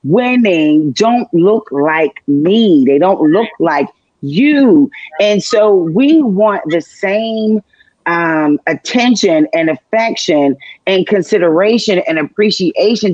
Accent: American